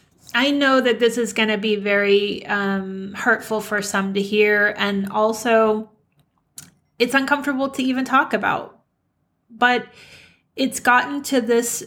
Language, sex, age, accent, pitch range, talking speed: English, female, 30-49, American, 210-250 Hz, 140 wpm